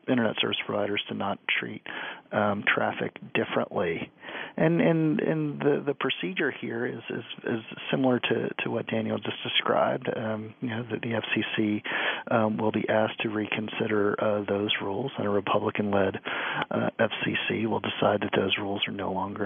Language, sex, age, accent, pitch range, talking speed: English, male, 40-59, American, 105-115 Hz, 165 wpm